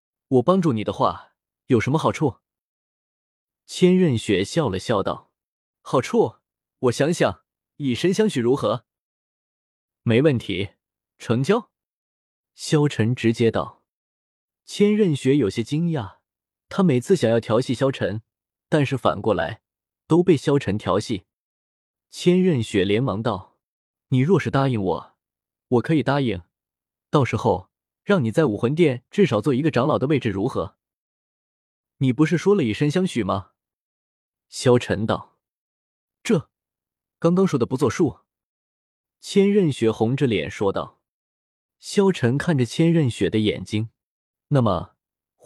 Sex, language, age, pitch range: male, Chinese, 20-39, 105-160 Hz